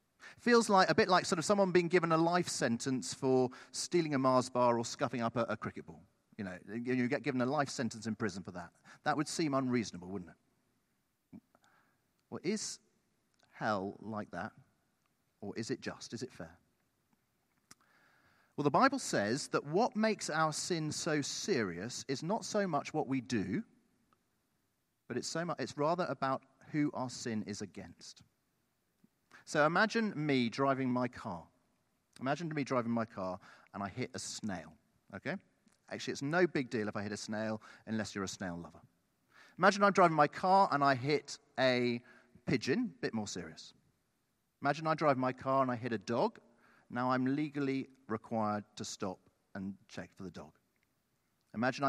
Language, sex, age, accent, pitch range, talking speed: English, male, 40-59, British, 110-155 Hz, 175 wpm